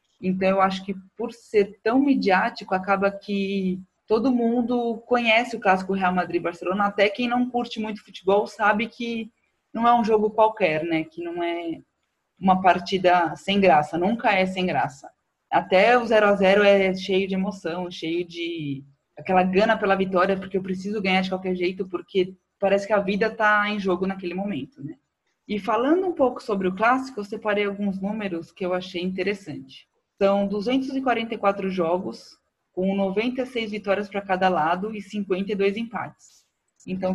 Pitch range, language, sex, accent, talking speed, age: 185-215 Hz, Portuguese, female, Brazilian, 165 wpm, 20-39